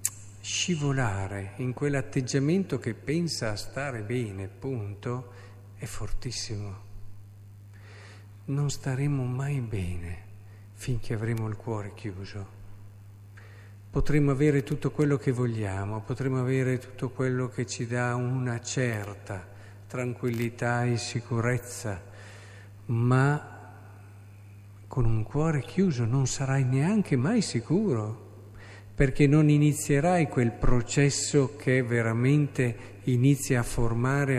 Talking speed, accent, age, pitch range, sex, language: 100 wpm, native, 50-69, 100-140 Hz, male, Italian